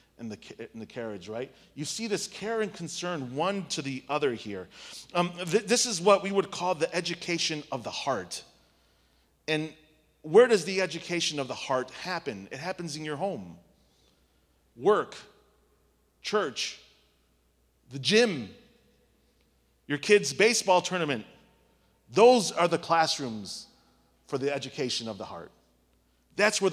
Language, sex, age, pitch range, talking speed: English, male, 30-49, 115-195 Hz, 145 wpm